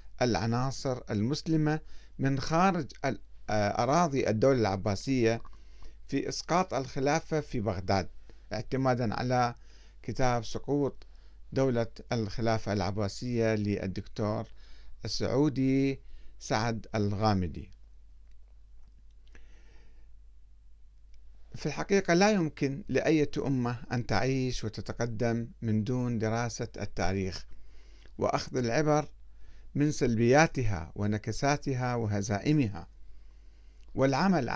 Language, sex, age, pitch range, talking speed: Arabic, male, 50-69, 95-140 Hz, 75 wpm